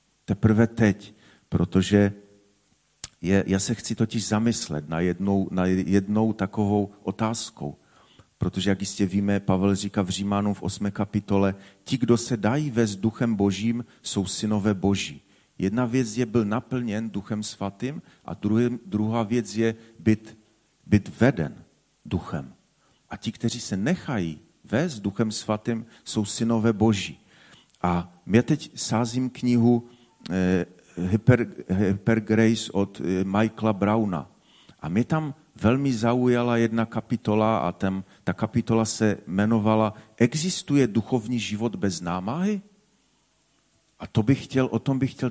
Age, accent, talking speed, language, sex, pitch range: 40-59, native, 130 wpm, Czech, male, 100-120 Hz